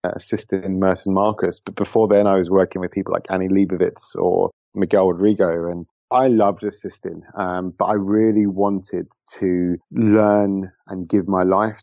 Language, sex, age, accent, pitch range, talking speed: English, male, 30-49, British, 90-105 Hz, 170 wpm